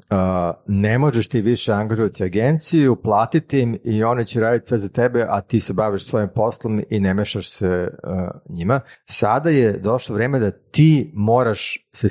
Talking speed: 180 wpm